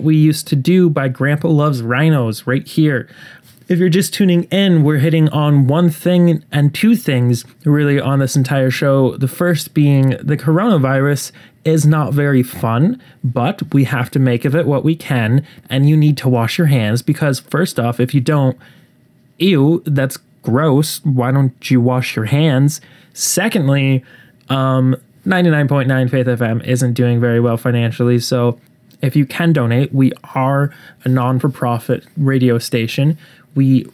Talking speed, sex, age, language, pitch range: 160 wpm, male, 20-39, English, 125-155 Hz